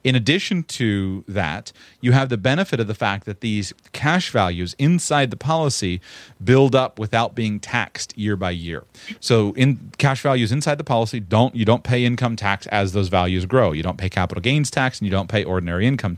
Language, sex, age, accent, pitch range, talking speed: English, male, 30-49, American, 100-125 Hz, 205 wpm